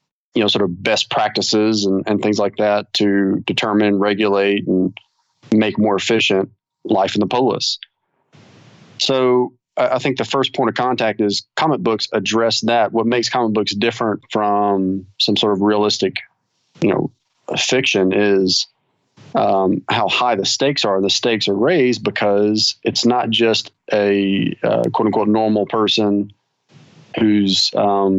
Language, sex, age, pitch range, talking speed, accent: English, male, 30-49, 100-115 Hz, 150 wpm, American